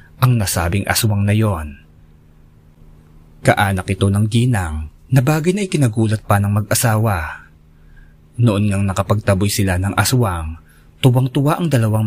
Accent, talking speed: native, 125 wpm